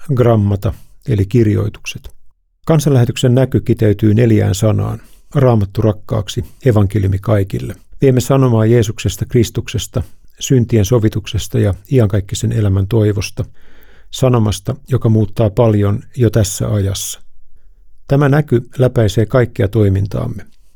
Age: 50-69